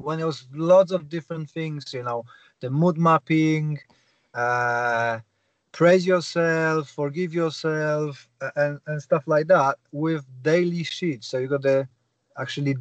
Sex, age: male, 30-49